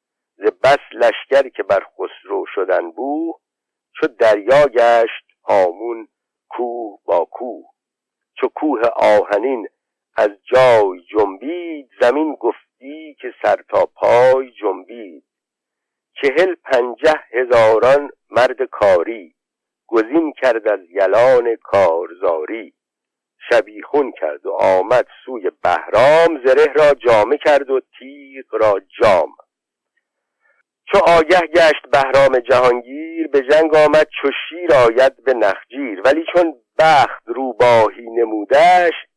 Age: 50-69